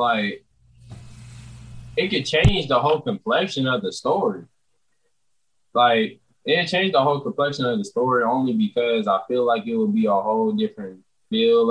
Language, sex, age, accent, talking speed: English, male, 20-39, American, 160 wpm